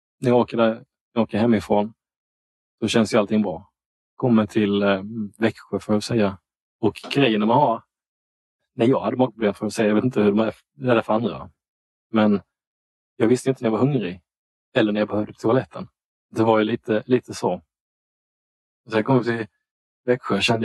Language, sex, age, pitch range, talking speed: Swedish, male, 20-39, 95-115 Hz, 205 wpm